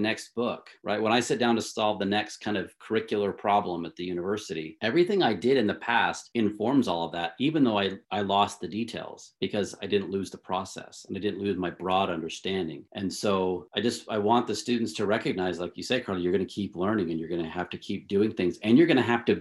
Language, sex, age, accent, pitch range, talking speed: English, male, 40-59, American, 95-115 Hz, 255 wpm